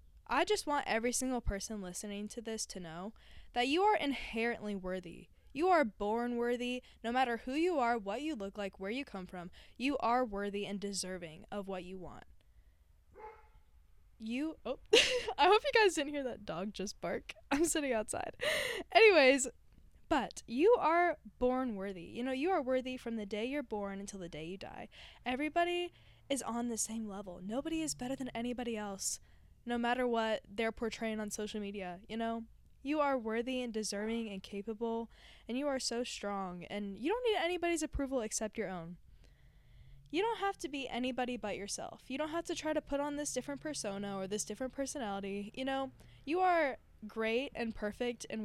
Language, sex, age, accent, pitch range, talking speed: English, female, 10-29, American, 205-280 Hz, 190 wpm